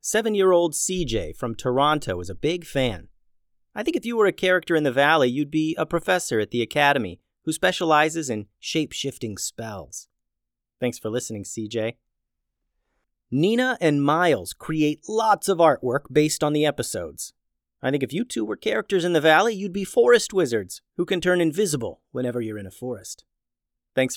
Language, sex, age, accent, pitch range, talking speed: English, male, 30-49, American, 120-175 Hz, 170 wpm